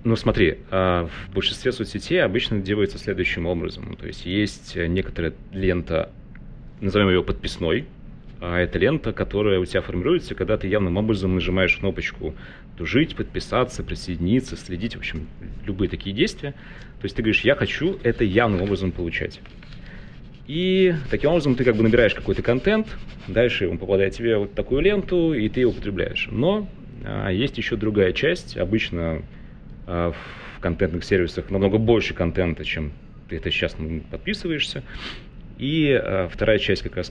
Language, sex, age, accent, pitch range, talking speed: Russian, male, 30-49, native, 90-115 Hz, 150 wpm